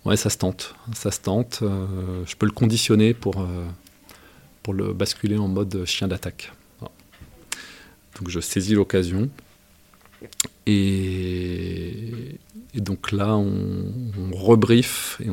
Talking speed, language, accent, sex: 135 wpm, French, French, male